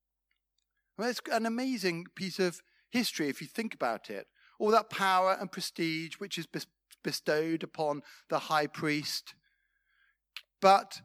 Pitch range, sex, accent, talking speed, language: 160-230 Hz, male, British, 135 wpm, English